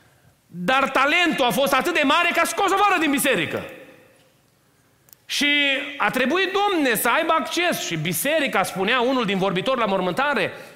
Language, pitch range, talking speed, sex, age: Romanian, 205-275 Hz, 160 wpm, male, 30-49